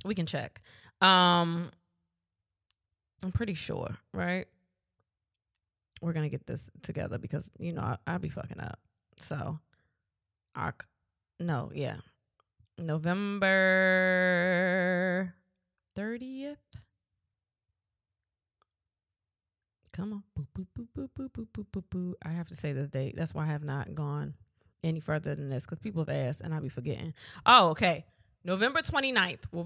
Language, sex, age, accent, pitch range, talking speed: English, female, 20-39, American, 120-190 Hz, 135 wpm